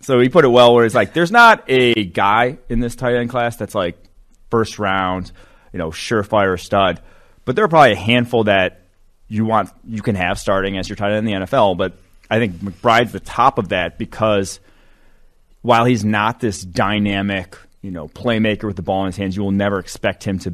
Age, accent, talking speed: 30-49, American, 215 wpm